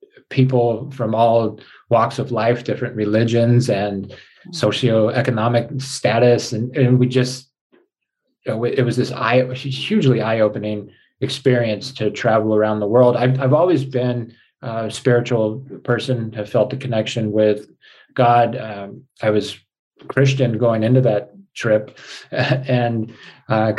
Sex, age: male, 30-49